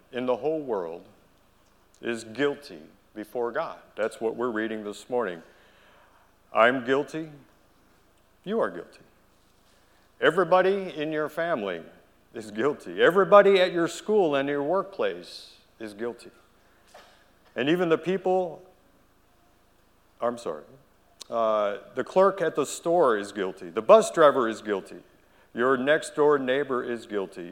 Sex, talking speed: male, 125 wpm